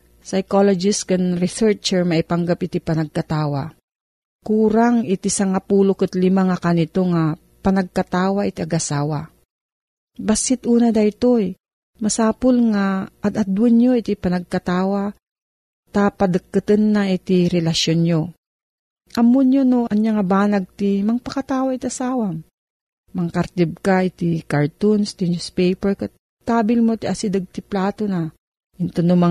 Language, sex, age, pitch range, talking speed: Filipino, female, 40-59, 170-215 Hz, 115 wpm